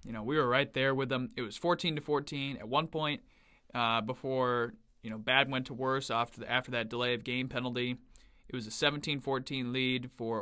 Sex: male